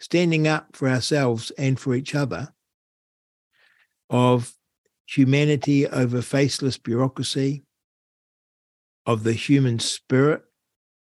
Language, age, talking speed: Finnish, 60-79, 95 wpm